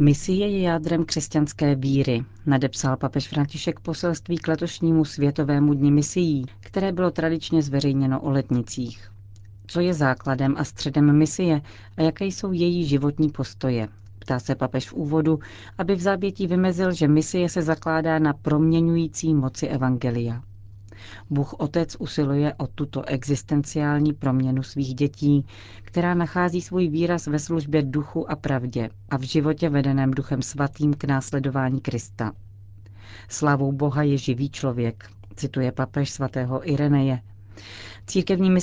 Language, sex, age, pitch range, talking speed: Czech, female, 40-59, 125-155 Hz, 135 wpm